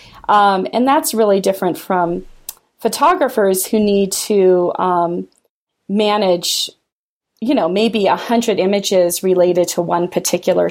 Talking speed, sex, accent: 120 wpm, female, American